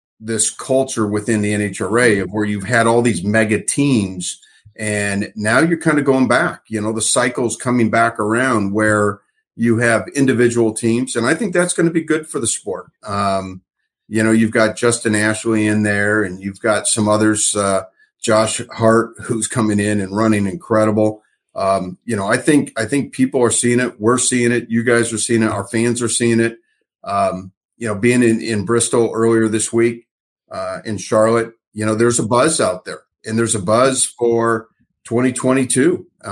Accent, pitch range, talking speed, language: American, 105-120 Hz, 190 wpm, English